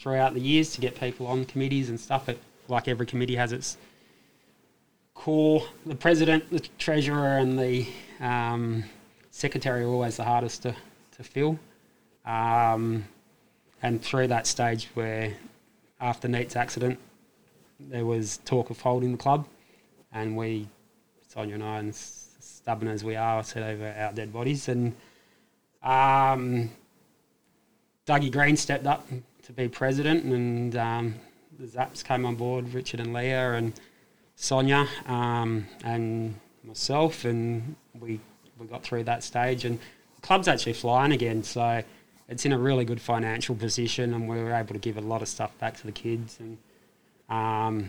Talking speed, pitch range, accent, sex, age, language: 155 wpm, 115-130 Hz, Australian, male, 20-39, English